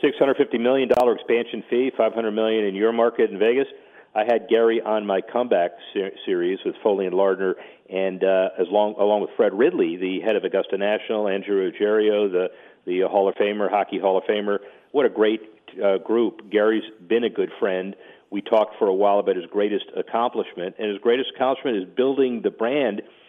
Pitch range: 105-135 Hz